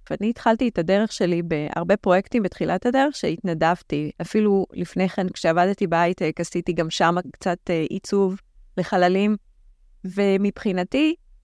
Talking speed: 115 wpm